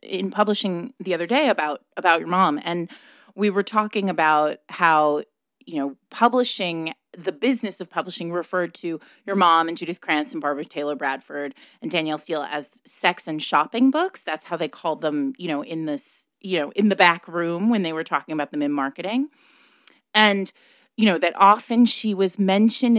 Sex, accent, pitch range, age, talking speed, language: female, American, 165-235 Hz, 30-49, 190 wpm, English